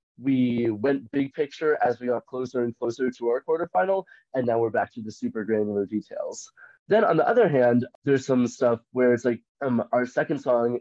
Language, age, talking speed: English, 20-39, 205 wpm